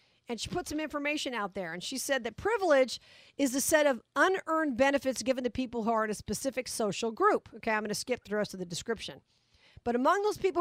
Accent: American